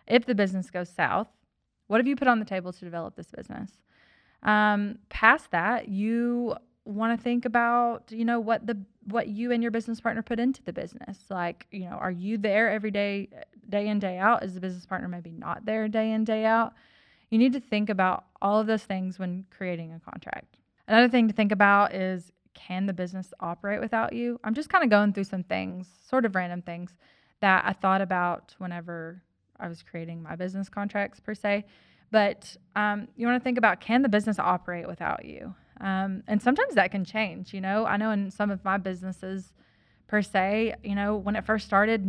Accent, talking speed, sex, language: American, 210 wpm, female, English